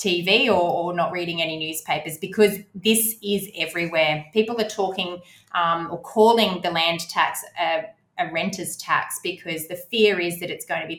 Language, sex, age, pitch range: English, female, 20-39, 170-200 Hz